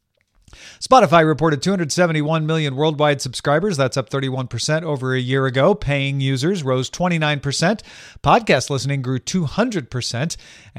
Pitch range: 125-165 Hz